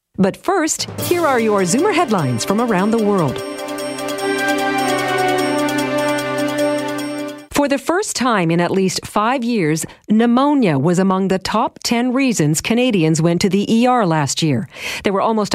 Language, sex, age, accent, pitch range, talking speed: English, female, 50-69, American, 160-255 Hz, 145 wpm